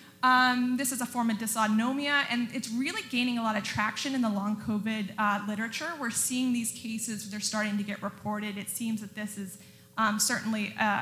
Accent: American